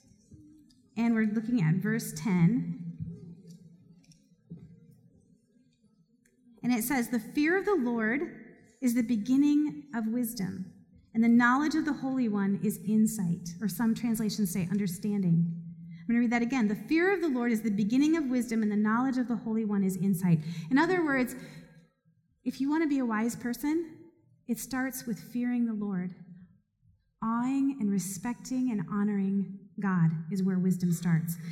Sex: female